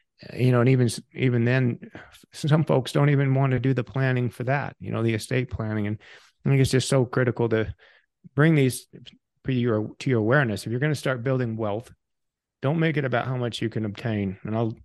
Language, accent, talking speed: English, American, 220 wpm